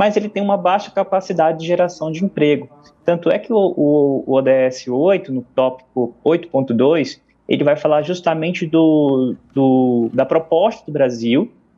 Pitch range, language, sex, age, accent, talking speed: 135-190 Hz, Portuguese, male, 20-39, Brazilian, 150 wpm